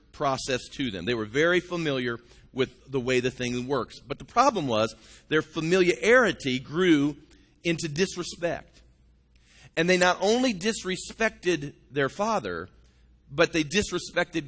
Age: 40-59